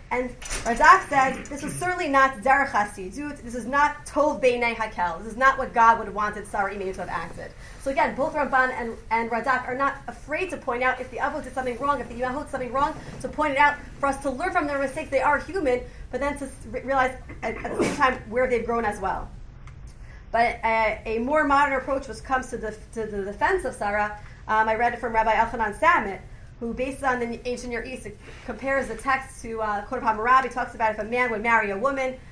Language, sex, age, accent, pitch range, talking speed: English, female, 30-49, American, 225-275 Hz, 240 wpm